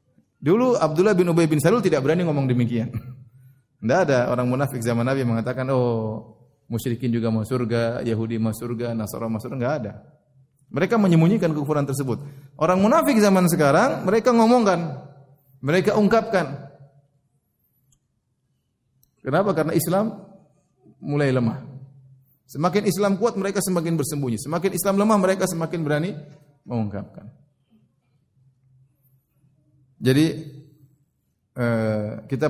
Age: 30-49